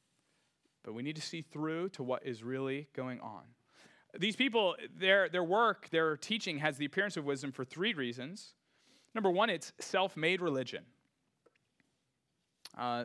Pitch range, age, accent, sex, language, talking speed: 145-200 Hz, 30-49, American, male, English, 150 wpm